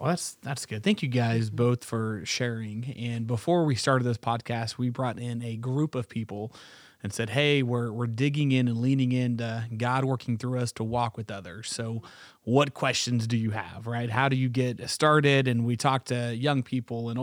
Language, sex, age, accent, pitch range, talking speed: English, male, 30-49, American, 115-135 Hz, 210 wpm